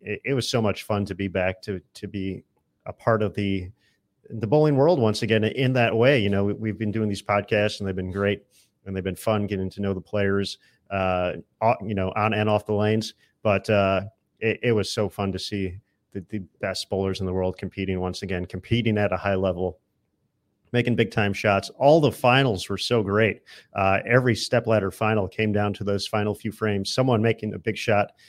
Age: 40-59